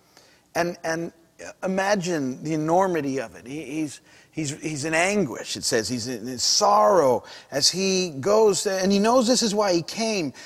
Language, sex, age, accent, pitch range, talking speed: English, male, 40-59, American, 155-215 Hz, 165 wpm